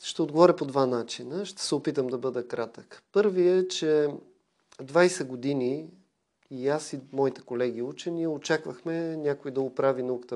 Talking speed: 155 wpm